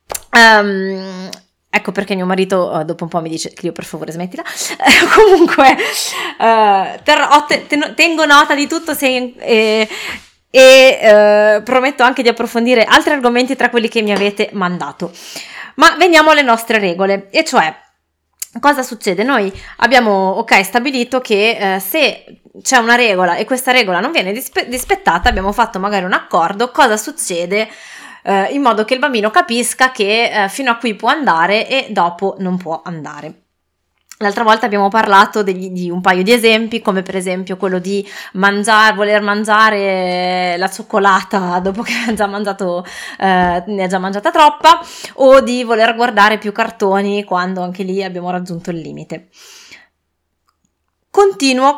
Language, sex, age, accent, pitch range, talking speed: Italian, female, 20-39, native, 190-255 Hz, 150 wpm